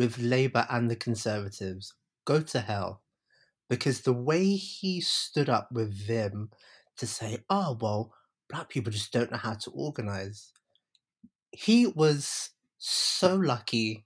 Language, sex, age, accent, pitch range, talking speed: English, male, 30-49, British, 110-125 Hz, 135 wpm